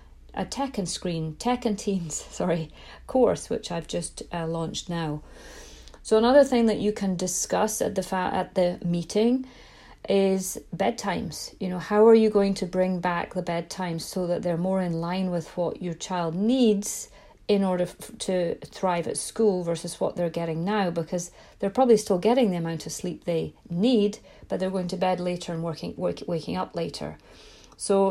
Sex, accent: female, British